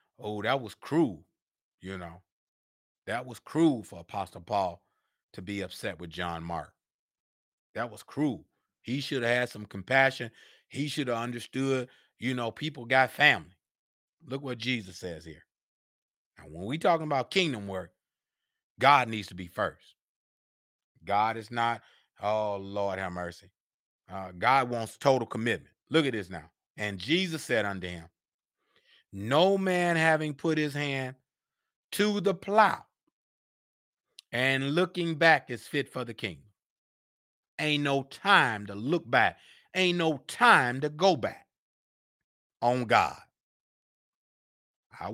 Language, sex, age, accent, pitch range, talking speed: English, male, 30-49, American, 100-145 Hz, 140 wpm